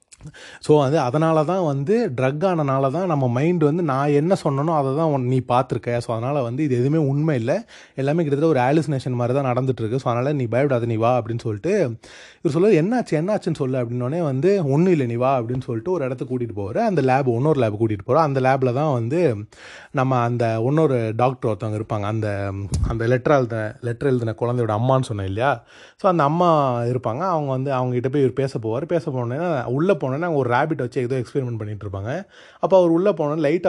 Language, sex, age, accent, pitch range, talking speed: Tamil, male, 30-49, native, 120-155 Hz, 185 wpm